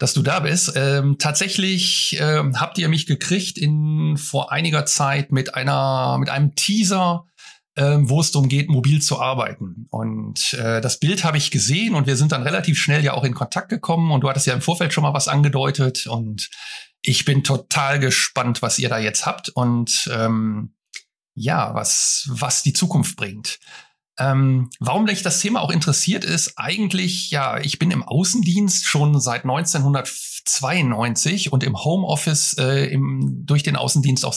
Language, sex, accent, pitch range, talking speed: German, male, German, 125-155 Hz, 175 wpm